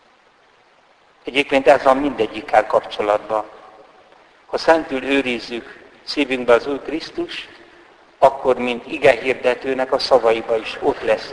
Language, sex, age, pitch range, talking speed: Hungarian, male, 60-79, 115-150 Hz, 105 wpm